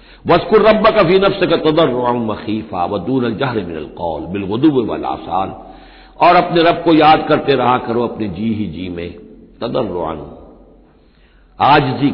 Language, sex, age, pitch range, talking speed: Hindi, male, 60-79, 110-170 Hz, 130 wpm